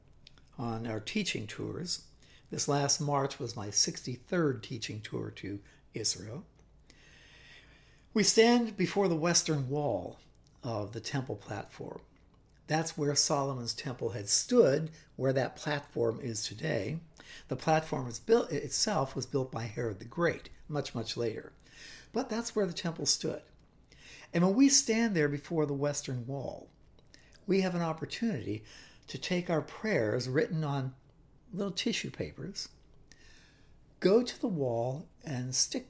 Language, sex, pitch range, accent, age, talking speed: English, male, 130-170 Hz, American, 60-79, 140 wpm